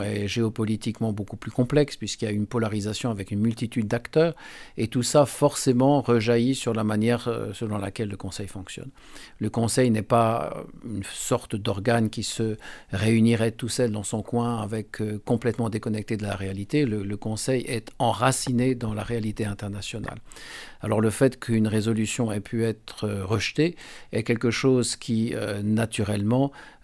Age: 50-69